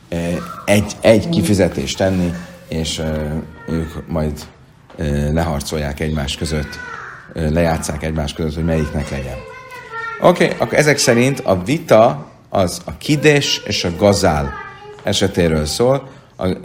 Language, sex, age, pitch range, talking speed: Hungarian, male, 30-49, 80-105 Hz, 110 wpm